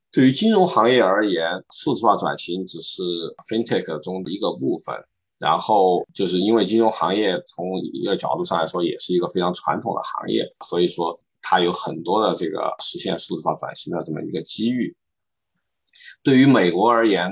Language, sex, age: Chinese, male, 20-39